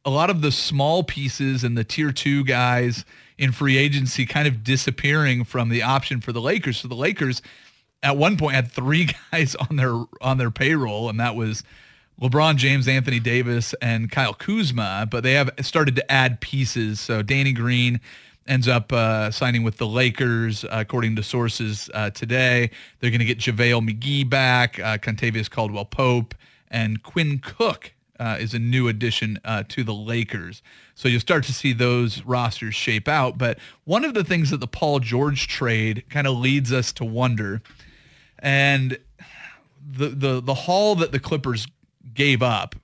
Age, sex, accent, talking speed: 30-49, male, American, 180 wpm